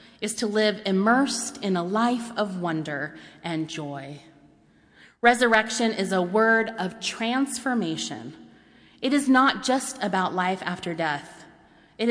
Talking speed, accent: 130 wpm, American